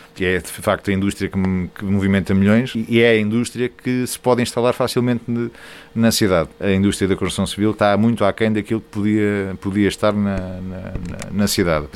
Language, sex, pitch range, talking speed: Portuguese, male, 95-125 Hz, 185 wpm